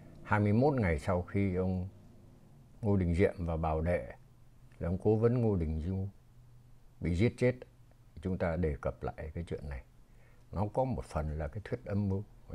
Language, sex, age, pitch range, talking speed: Vietnamese, male, 60-79, 90-120 Hz, 180 wpm